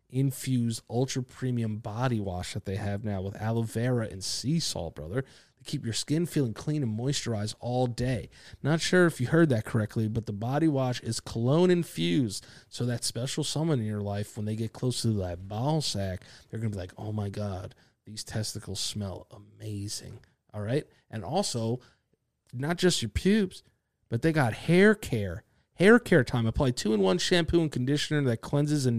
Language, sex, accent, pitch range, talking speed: English, male, American, 110-150 Hz, 185 wpm